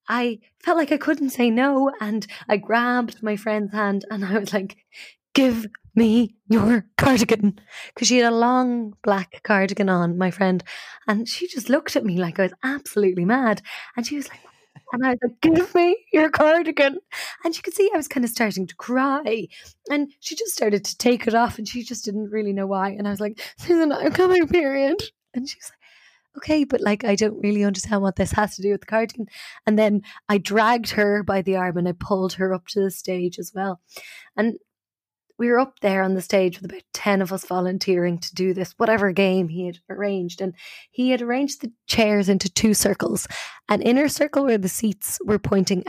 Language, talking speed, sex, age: English, 215 wpm, female, 20-39